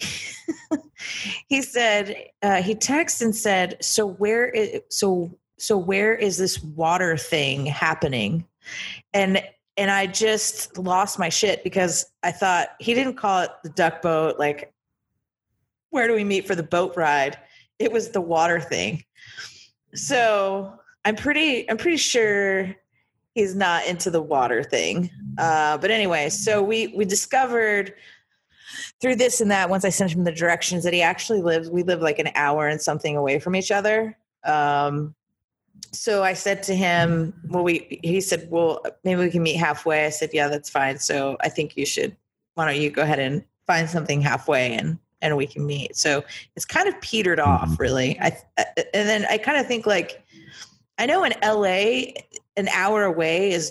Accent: American